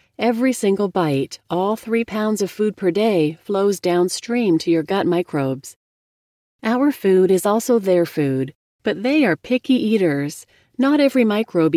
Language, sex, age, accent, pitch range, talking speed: English, female, 40-59, American, 165-225 Hz, 155 wpm